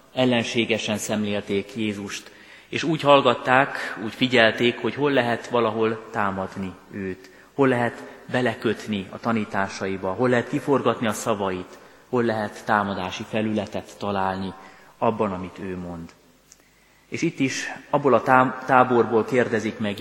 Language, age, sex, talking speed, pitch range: Hungarian, 30-49, male, 125 wpm, 100-120 Hz